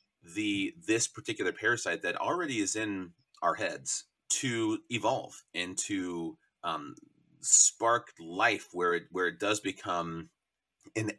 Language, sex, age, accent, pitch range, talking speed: English, male, 30-49, American, 105-170 Hz, 125 wpm